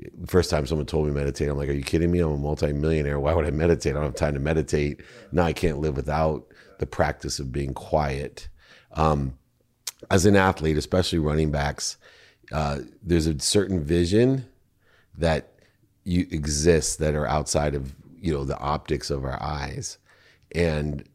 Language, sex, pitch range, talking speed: English, male, 75-90 Hz, 180 wpm